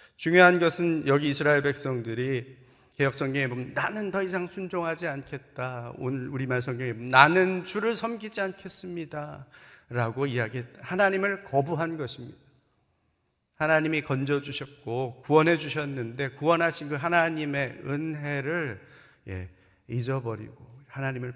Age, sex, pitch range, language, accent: 40-59, male, 120-150 Hz, Korean, native